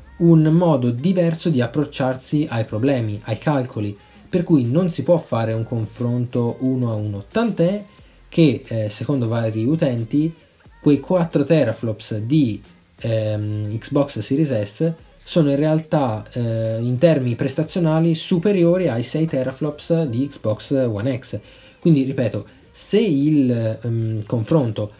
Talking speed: 130 wpm